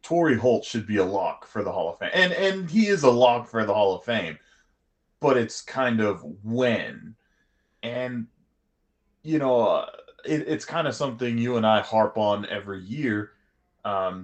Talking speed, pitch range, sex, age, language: 180 wpm, 105-125 Hz, male, 20-39, English